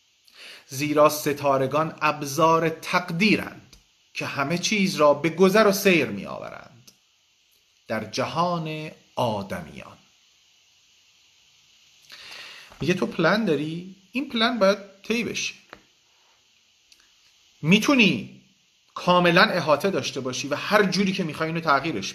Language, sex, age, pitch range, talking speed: Persian, male, 40-59, 145-195 Hz, 100 wpm